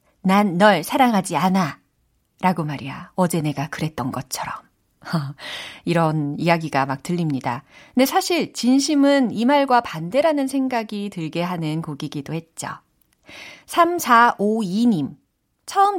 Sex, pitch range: female, 160-245 Hz